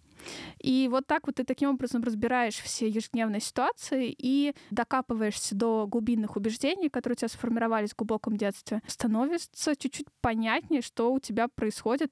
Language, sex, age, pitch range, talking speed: Russian, female, 20-39, 220-265 Hz, 150 wpm